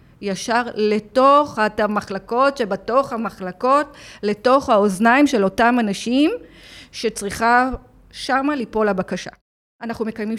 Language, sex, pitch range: Hebrew, female, 200-235 Hz